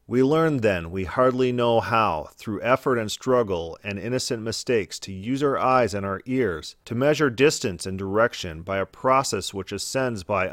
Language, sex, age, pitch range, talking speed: English, male, 40-59, 100-130 Hz, 185 wpm